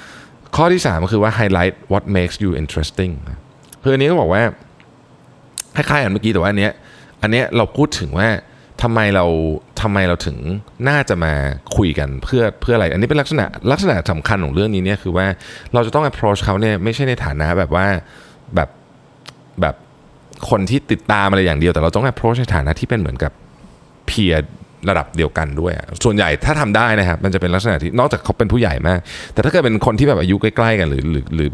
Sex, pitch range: male, 80-115 Hz